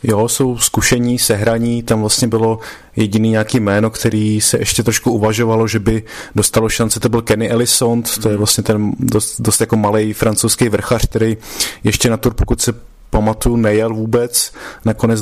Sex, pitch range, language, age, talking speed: male, 95-110 Hz, Slovak, 20-39, 170 wpm